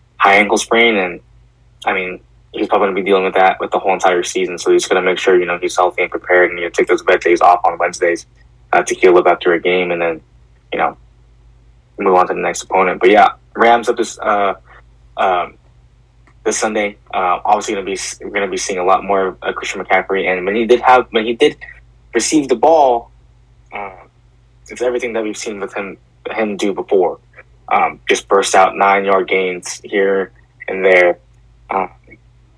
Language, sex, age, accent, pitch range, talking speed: English, male, 20-39, American, 90-120 Hz, 210 wpm